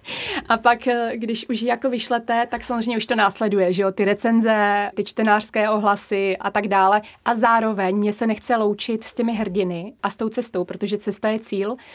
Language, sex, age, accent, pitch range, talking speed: Czech, female, 20-39, native, 195-225 Hz, 190 wpm